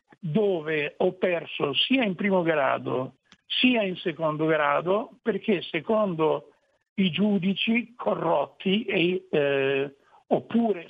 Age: 60-79